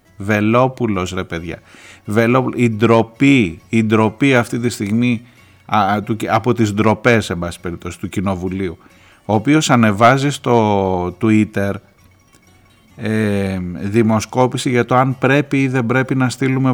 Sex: male